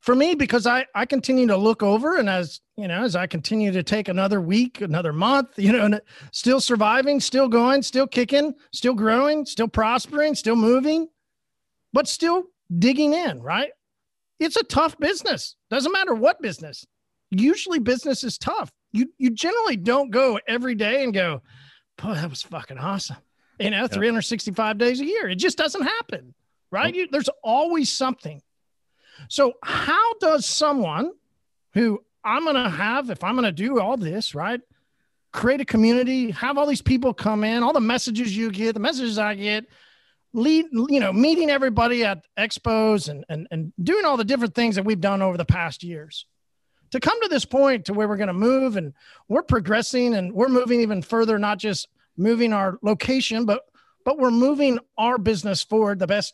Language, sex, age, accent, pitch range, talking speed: English, male, 40-59, American, 205-270 Hz, 180 wpm